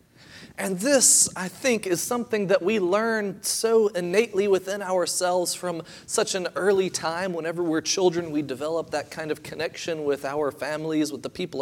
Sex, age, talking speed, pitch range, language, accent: male, 30-49, 170 wpm, 115-175 Hz, English, American